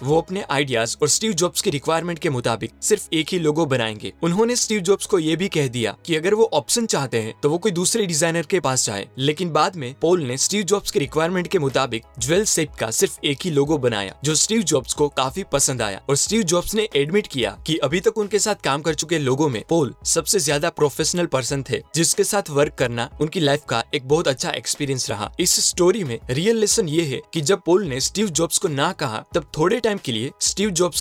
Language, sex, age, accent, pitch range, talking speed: Hindi, male, 20-39, native, 135-180 Hz, 230 wpm